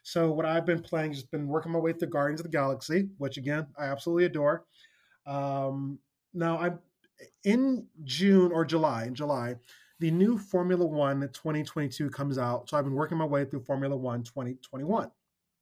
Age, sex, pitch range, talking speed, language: 20-39, male, 140-180 Hz, 175 wpm, English